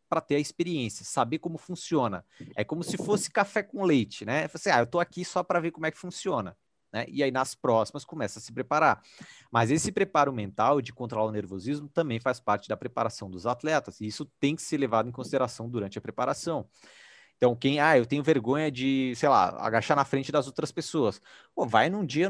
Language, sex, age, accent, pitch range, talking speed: Portuguese, male, 30-49, Brazilian, 120-165 Hz, 220 wpm